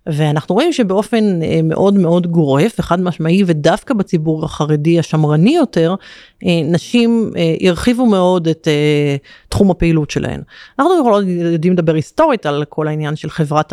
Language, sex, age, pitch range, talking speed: Hebrew, female, 30-49, 160-200 Hz, 130 wpm